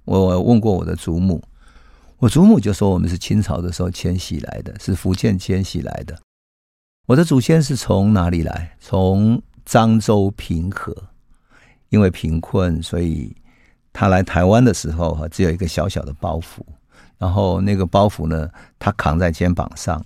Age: 50-69